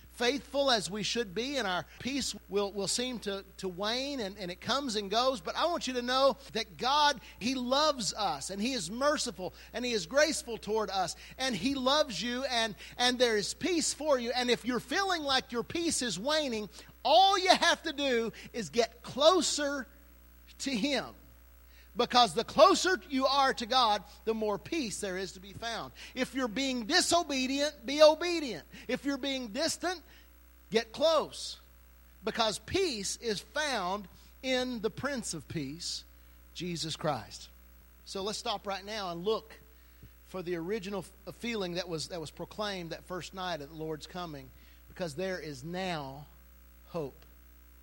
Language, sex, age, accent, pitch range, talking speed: English, male, 50-69, American, 155-260 Hz, 170 wpm